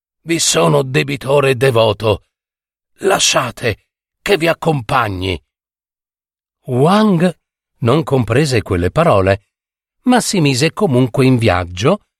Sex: male